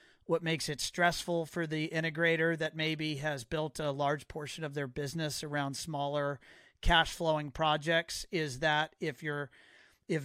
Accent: American